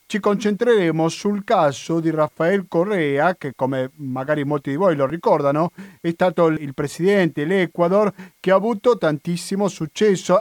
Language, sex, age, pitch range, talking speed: Italian, male, 50-69, 140-180 Hz, 145 wpm